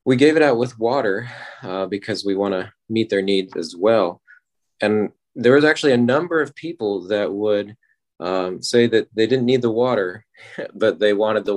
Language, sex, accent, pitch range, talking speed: English, male, American, 100-125 Hz, 195 wpm